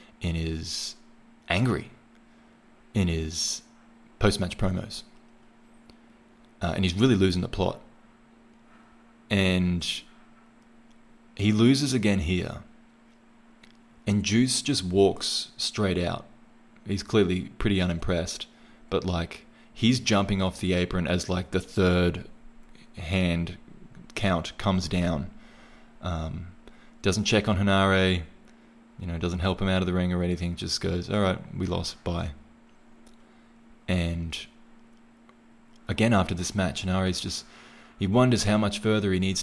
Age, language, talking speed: 20-39, English, 120 wpm